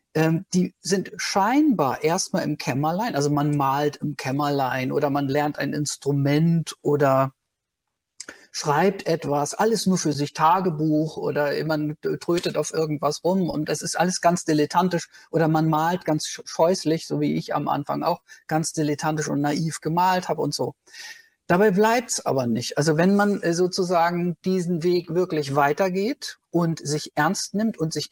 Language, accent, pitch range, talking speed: German, German, 150-200 Hz, 155 wpm